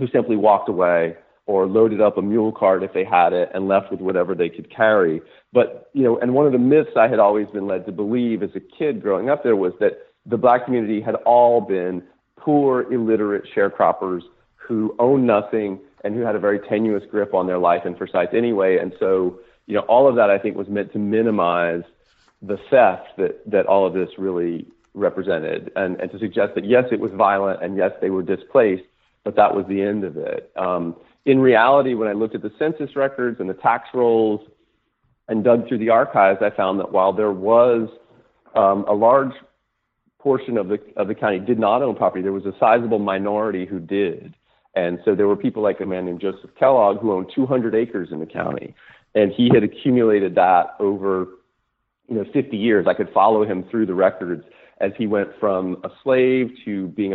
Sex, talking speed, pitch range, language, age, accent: male, 210 wpm, 95-120 Hz, English, 40-59, American